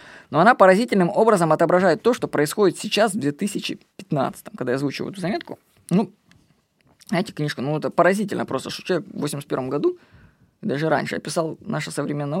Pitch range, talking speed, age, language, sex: 160-210 Hz, 165 wpm, 20-39, Russian, female